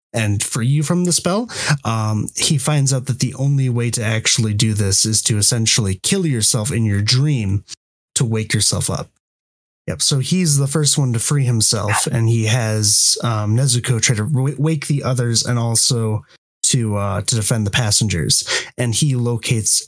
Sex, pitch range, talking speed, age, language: male, 110-145 Hz, 185 wpm, 20-39, English